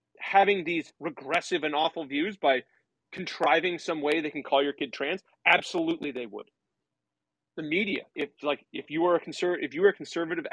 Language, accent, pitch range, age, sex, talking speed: English, American, 155-235 Hz, 30-49, male, 190 wpm